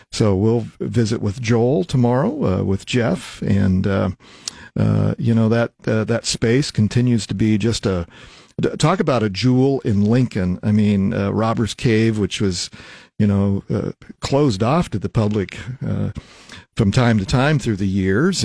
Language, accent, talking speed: English, American, 170 wpm